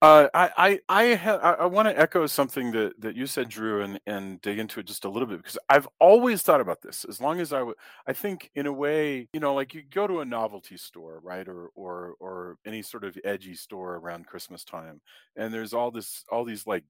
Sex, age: male, 40-59